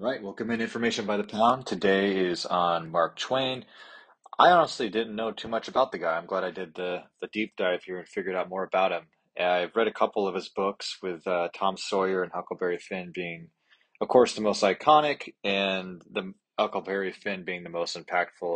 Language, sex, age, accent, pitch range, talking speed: English, male, 20-39, American, 90-115 Hz, 205 wpm